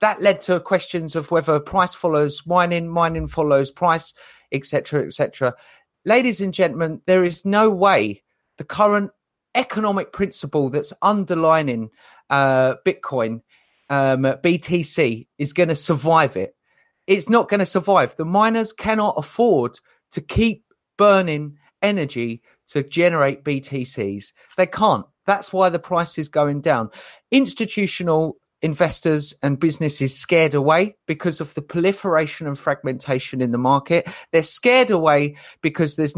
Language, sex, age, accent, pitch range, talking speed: English, male, 30-49, British, 145-190 Hz, 140 wpm